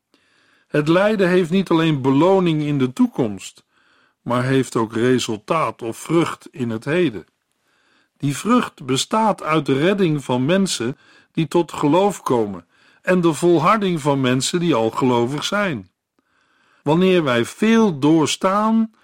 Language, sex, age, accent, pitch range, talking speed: Dutch, male, 50-69, Dutch, 130-180 Hz, 135 wpm